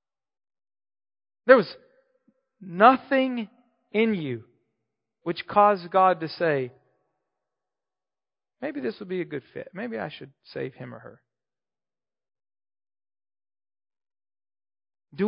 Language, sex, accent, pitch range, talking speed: English, male, American, 135-225 Hz, 100 wpm